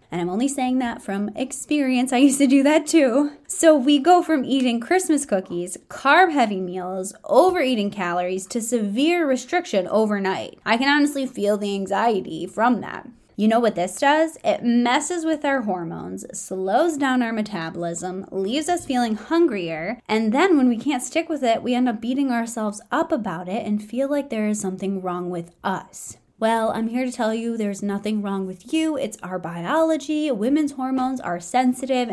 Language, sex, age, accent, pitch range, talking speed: English, female, 20-39, American, 195-275 Hz, 185 wpm